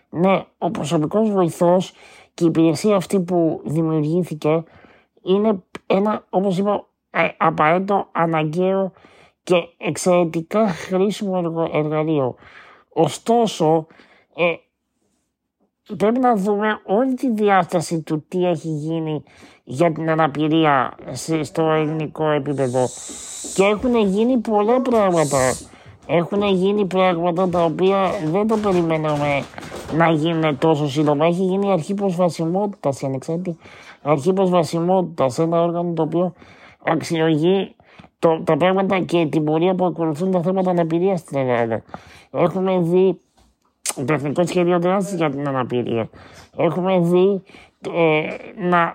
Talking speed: 115 wpm